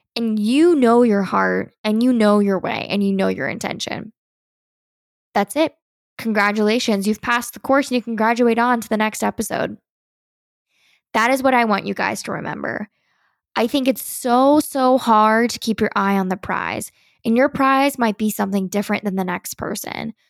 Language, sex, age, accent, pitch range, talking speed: English, female, 10-29, American, 205-255 Hz, 190 wpm